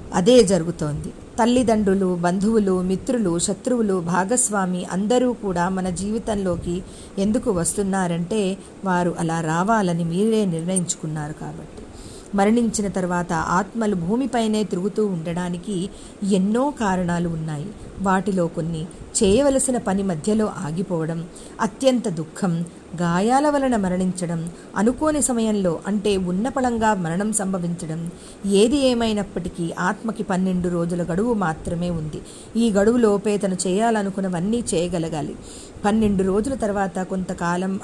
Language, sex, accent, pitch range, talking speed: Telugu, female, native, 175-215 Hz, 100 wpm